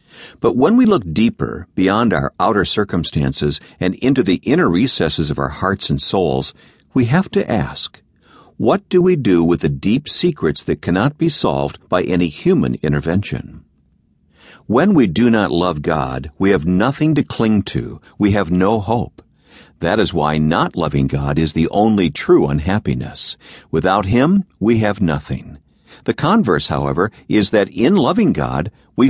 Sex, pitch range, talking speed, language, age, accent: male, 75-105 Hz, 165 wpm, English, 60-79, American